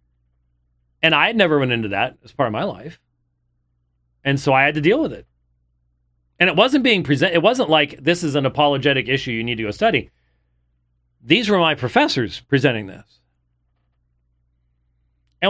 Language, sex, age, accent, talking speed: English, male, 40-59, American, 175 wpm